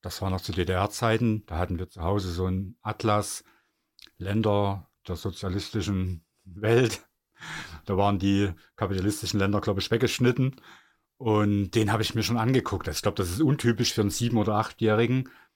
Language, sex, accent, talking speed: German, male, German, 160 wpm